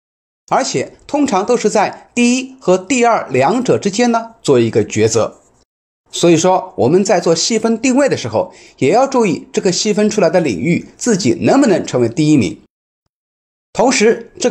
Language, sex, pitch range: Chinese, male, 155-245 Hz